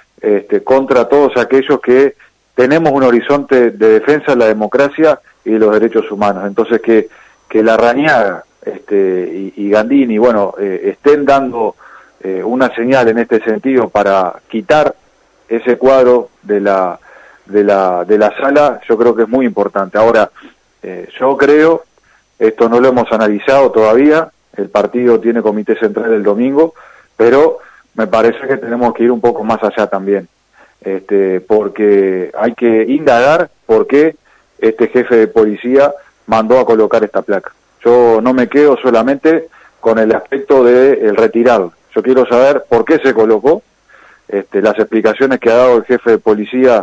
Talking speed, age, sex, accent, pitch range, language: 160 wpm, 40-59, male, Argentinian, 110-135 Hz, Spanish